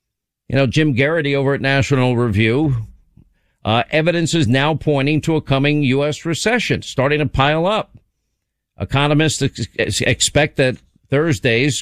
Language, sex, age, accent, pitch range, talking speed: English, male, 50-69, American, 130-160 Hz, 130 wpm